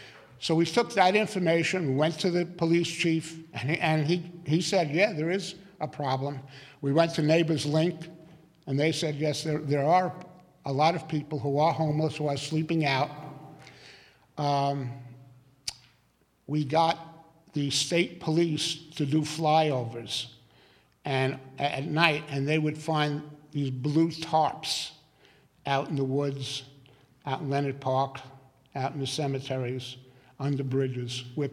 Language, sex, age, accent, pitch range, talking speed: English, male, 50-69, American, 135-160 Hz, 150 wpm